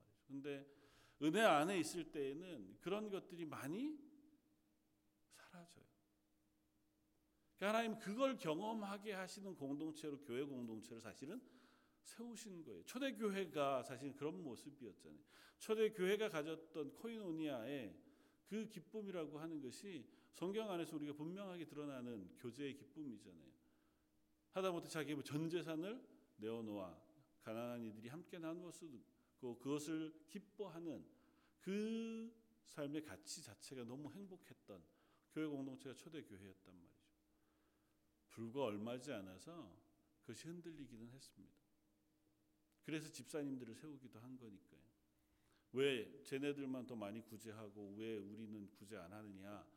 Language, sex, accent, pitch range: Korean, male, native, 110-175 Hz